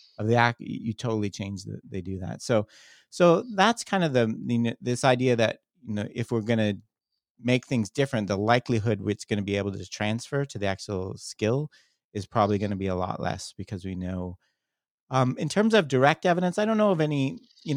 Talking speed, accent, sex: 220 wpm, American, male